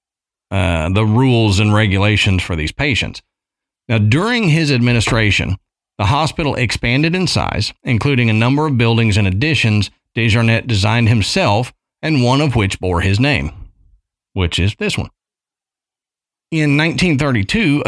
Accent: American